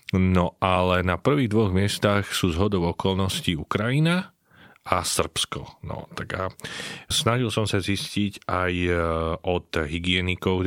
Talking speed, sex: 120 wpm, male